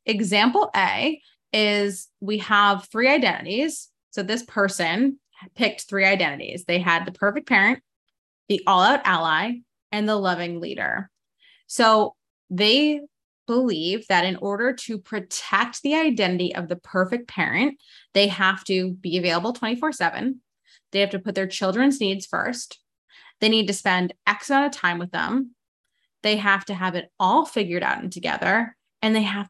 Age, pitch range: 20-39, 180-230 Hz